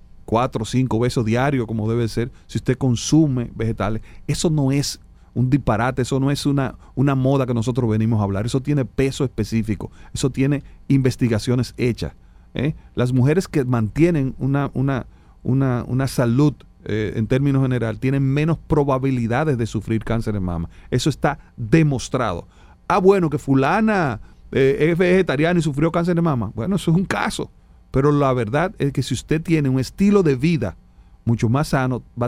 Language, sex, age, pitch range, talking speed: Spanish, male, 40-59, 115-145 Hz, 175 wpm